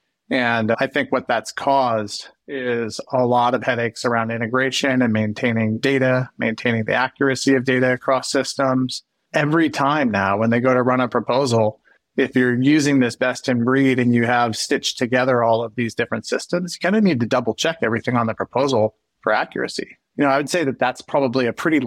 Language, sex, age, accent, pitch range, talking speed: English, male, 30-49, American, 120-140 Hz, 200 wpm